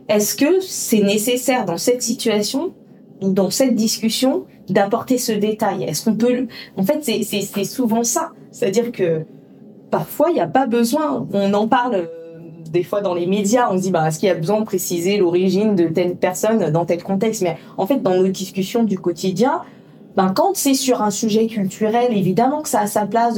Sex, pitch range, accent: female, 185-230 Hz, French